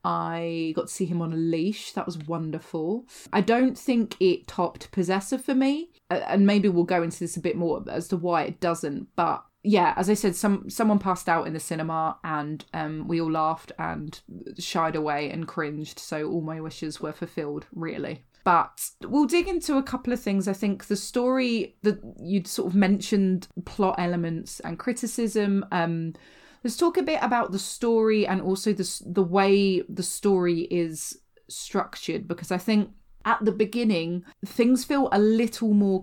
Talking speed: 185 wpm